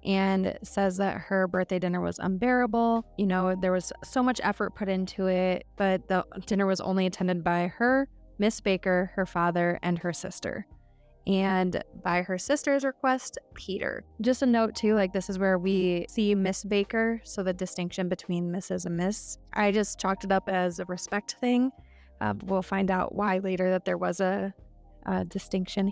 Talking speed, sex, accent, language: 185 wpm, female, American, English